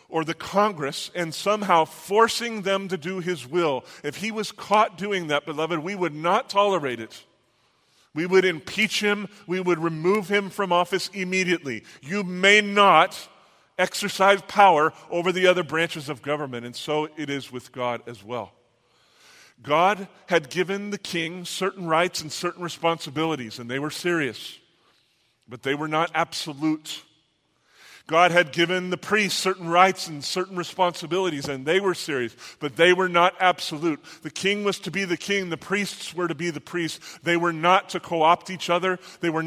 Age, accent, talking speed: 40-59, American, 175 wpm